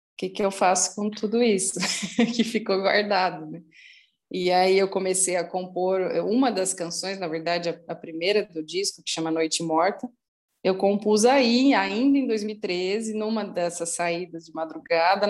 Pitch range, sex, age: 170-205 Hz, female, 20-39